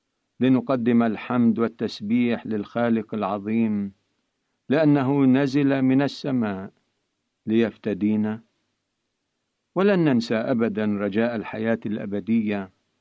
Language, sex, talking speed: Arabic, male, 75 wpm